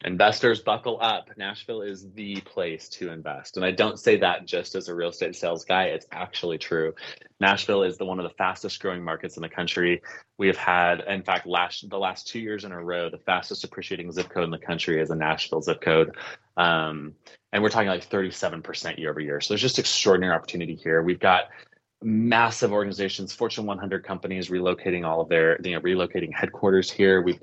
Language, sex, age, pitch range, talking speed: English, male, 20-39, 80-95 Hz, 205 wpm